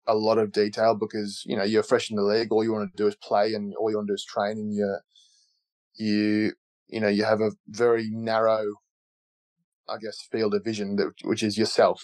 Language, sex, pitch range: English, male, 100-115 Hz